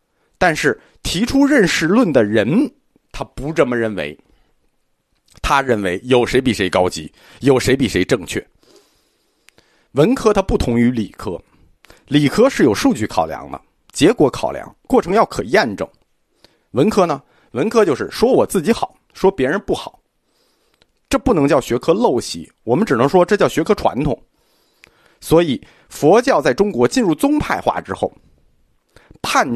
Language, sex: Chinese, male